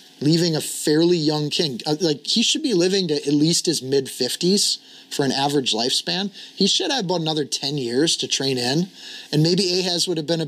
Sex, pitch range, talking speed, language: male, 140-175 Hz, 210 wpm, English